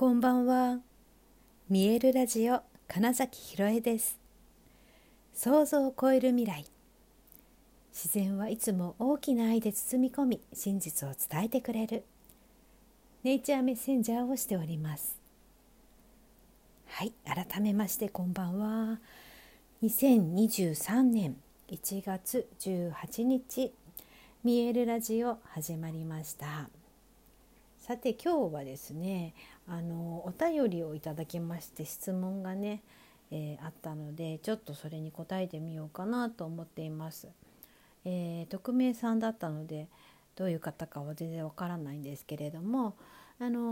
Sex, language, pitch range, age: female, Japanese, 165-240 Hz, 60-79